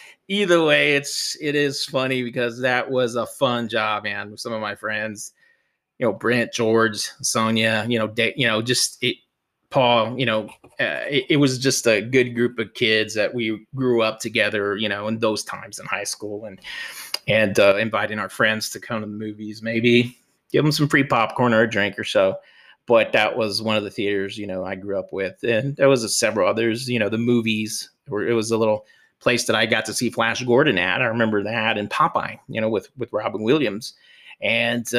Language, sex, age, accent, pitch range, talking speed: English, male, 30-49, American, 110-135 Hz, 215 wpm